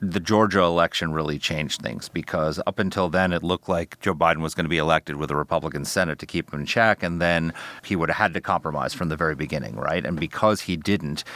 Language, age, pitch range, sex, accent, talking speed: English, 40-59, 85-110 Hz, male, American, 245 wpm